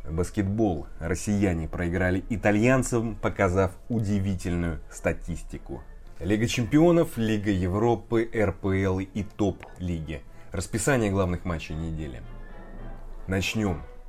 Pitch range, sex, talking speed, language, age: 85-110 Hz, male, 85 wpm, Russian, 20-39